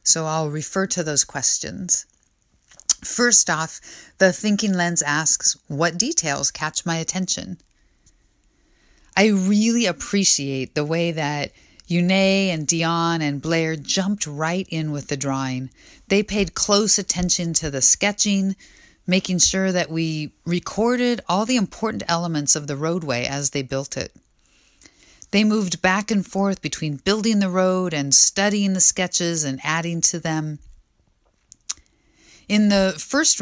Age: 40-59